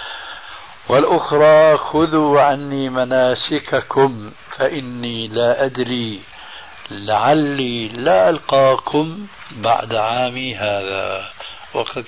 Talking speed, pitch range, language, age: 70 wpm, 110-140 Hz, Arabic, 60-79